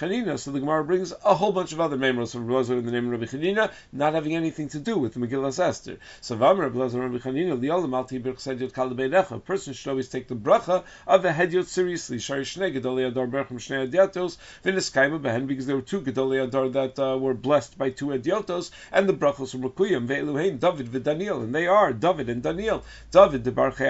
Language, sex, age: English, male, 50-69